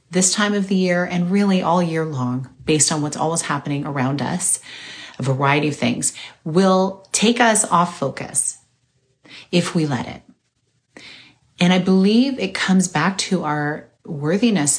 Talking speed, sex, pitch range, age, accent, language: 160 wpm, female, 145-190 Hz, 30-49, American, English